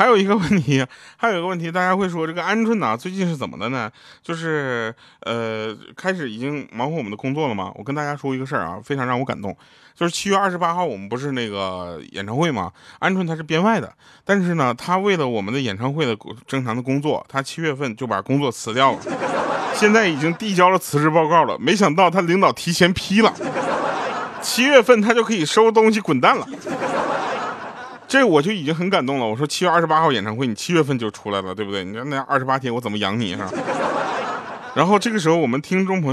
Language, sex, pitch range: Chinese, male, 135-195 Hz